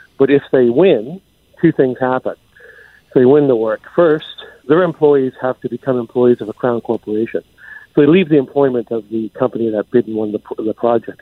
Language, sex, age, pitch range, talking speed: English, male, 50-69, 115-135 Hz, 205 wpm